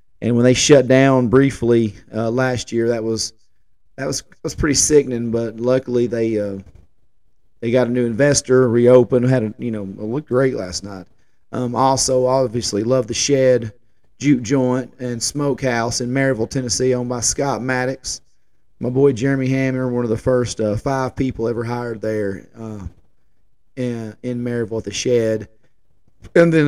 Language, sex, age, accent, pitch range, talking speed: English, male, 30-49, American, 115-135 Hz, 170 wpm